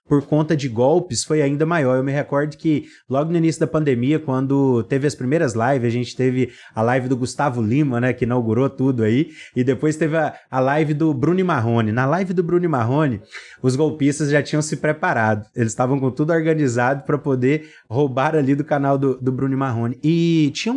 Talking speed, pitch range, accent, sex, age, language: 205 wpm, 135-180 Hz, Brazilian, male, 20-39, Portuguese